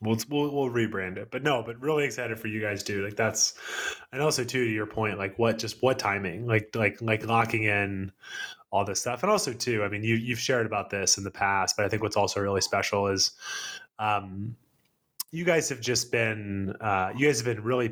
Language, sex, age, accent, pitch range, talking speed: English, male, 20-39, American, 100-125 Hz, 225 wpm